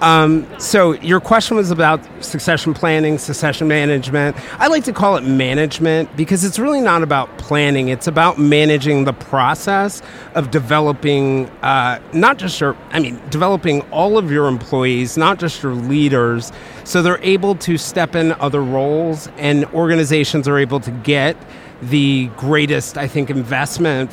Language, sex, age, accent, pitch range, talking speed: English, male, 40-59, American, 135-165 Hz, 155 wpm